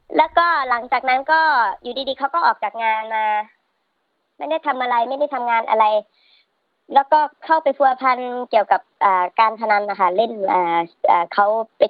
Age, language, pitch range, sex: 30-49, Thai, 215-270 Hz, male